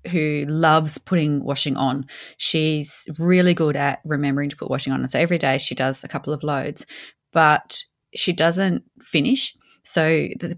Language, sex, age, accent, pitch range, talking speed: English, female, 20-39, Australian, 140-170 Hz, 170 wpm